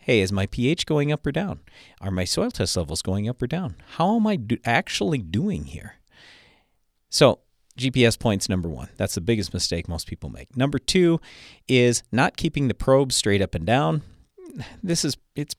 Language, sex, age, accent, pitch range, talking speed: English, male, 40-59, American, 100-130 Hz, 195 wpm